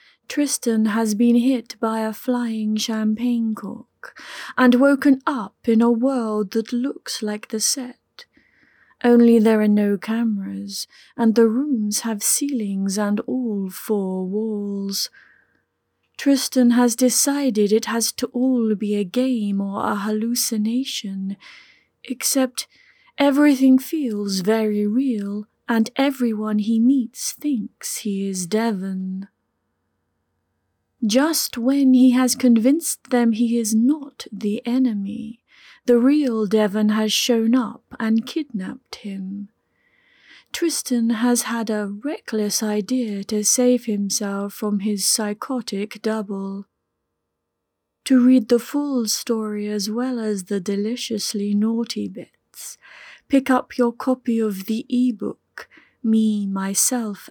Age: 30-49